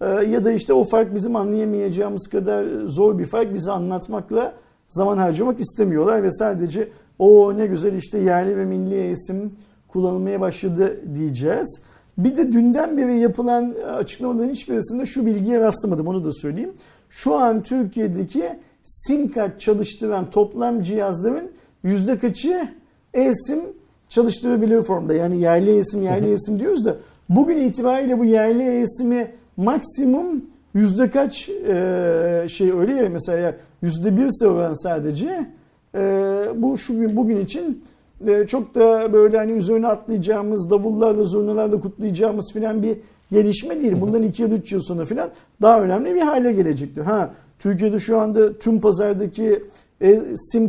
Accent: native